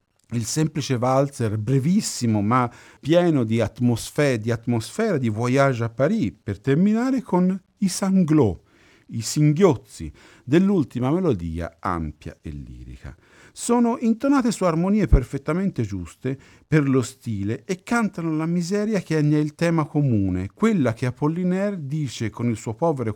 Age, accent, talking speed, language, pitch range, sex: 50-69, native, 135 wpm, Italian, 105-170 Hz, male